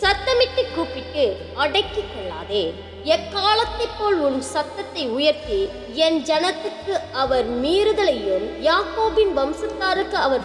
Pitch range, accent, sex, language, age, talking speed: 295-435 Hz, native, female, Tamil, 20-39, 90 wpm